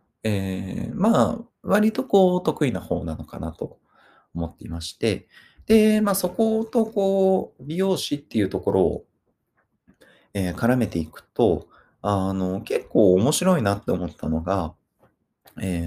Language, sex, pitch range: Japanese, male, 90-125 Hz